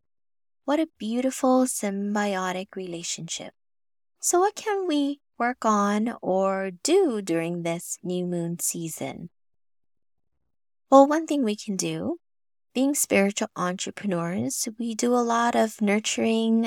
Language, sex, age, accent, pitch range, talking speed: English, female, 20-39, American, 175-255 Hz, 120 wpm